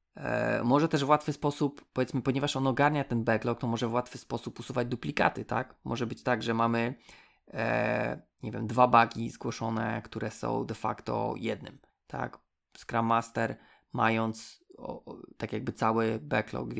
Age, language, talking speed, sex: 20-39, Polish, 165 wpm, male